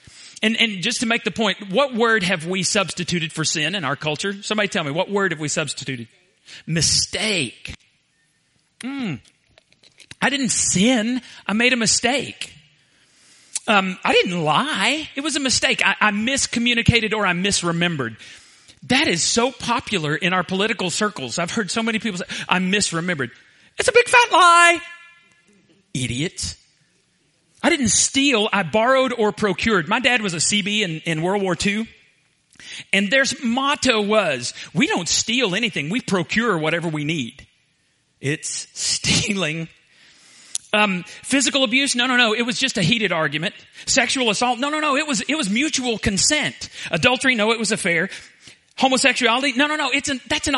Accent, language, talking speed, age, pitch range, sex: American, English, 165 wpm, 40-59, 180-255 Hz, male